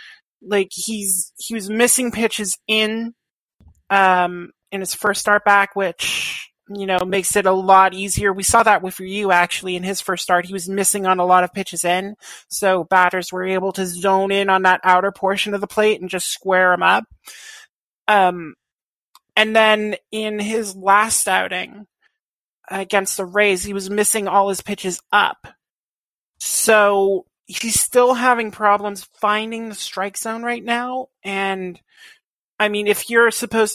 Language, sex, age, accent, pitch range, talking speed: English, male, 30-49, American, 185-210 Hz, 165 wpm